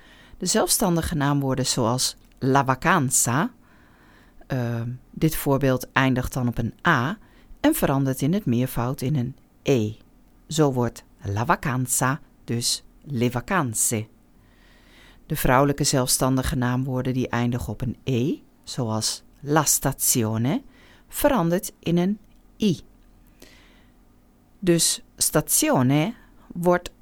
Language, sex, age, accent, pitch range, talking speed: Dutch, female, 40-59, Dutch, 125-165 Hz, 105 wpm